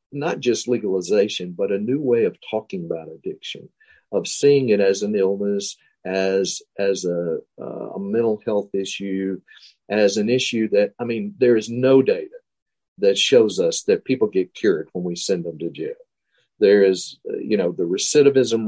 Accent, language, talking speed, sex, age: American, English, 170 wpm, male, 50-69